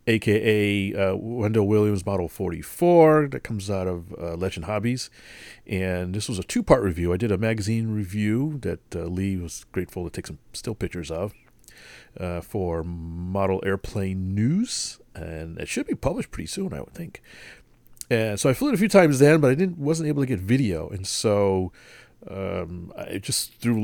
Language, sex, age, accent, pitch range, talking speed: English, male, 40-59, American, 95-120 Hz, 185 wpm